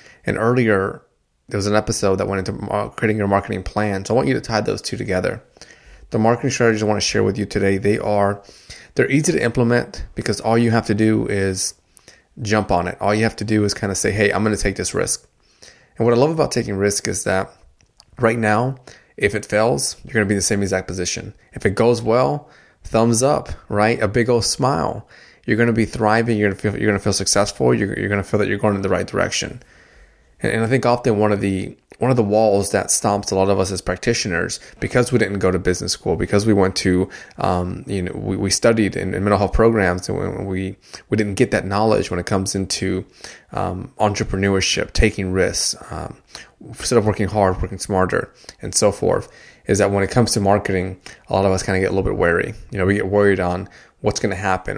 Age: 20-39